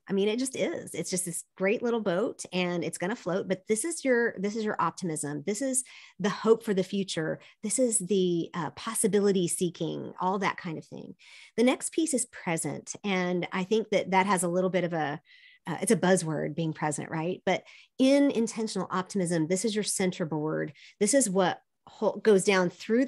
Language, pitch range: English, 175-225 Hz